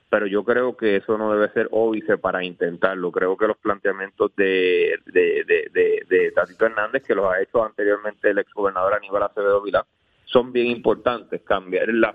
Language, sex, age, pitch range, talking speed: Spanish, male, 30-49, 100-125 Hz, 185 wpm